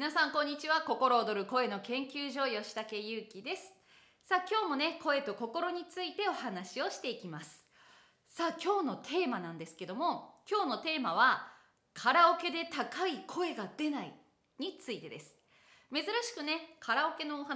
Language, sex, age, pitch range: Japanese, female, 20-39, 220-335 Hz